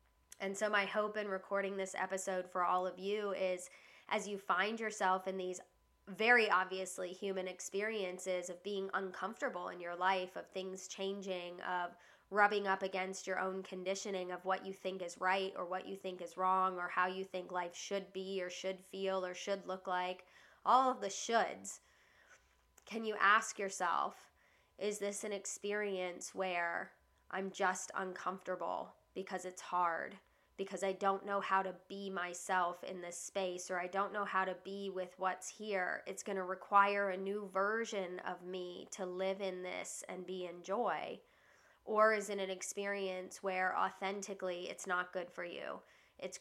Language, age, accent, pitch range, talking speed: English, 20-39, American, 180-195 Hz, 175 wpm